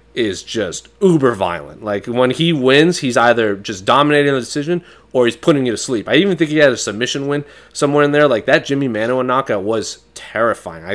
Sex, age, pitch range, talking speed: male, 20-39, 105-130 Hz, 205 wpm